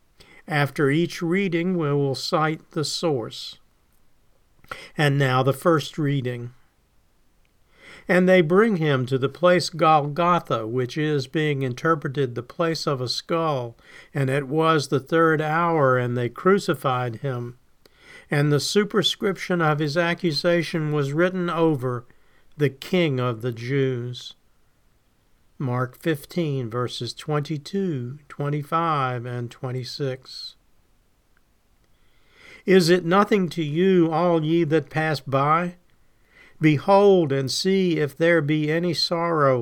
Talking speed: 120 wpm